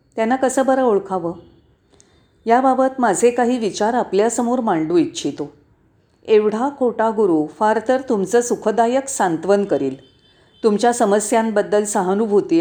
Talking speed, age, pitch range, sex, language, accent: 110 wpm, 40-59, 195-250 Hz, female, Marathi, native